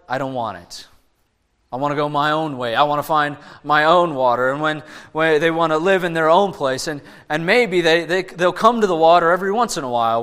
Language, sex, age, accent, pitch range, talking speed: English, male, 20-39, American, 140-175 Hz, 260 wpm